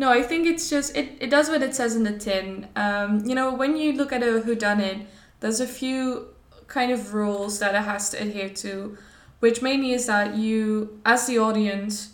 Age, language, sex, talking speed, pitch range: 10-29, English, female, 215 wpm, 205-240 Hz